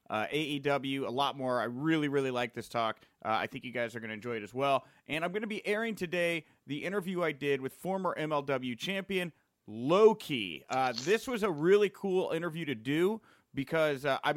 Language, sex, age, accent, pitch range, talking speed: English, male, 30-49, American, 120-160 Hz, 210 wpm